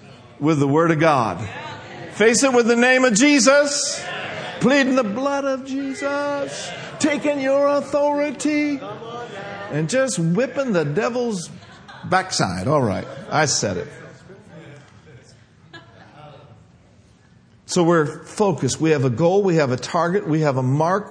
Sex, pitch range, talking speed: male, 130-205 Hz, 130 wpm